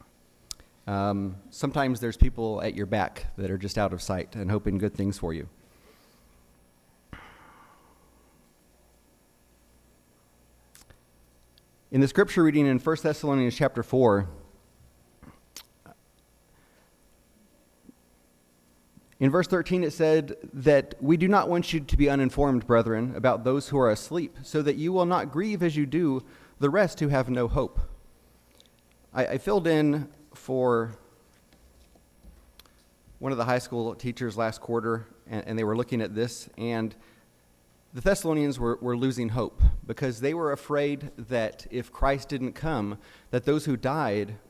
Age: 30-49